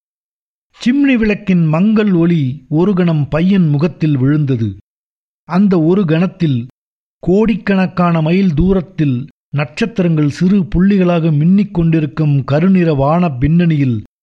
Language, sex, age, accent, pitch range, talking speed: Tamil, male, 50-69, native, 140-185 Hz, 95 wpm